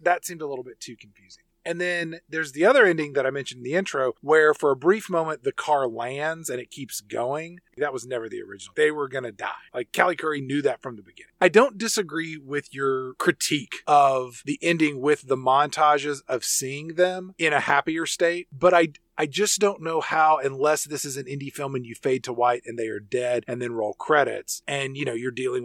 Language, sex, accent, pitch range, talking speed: English, male, American, 125-155 Hz, 230 wpm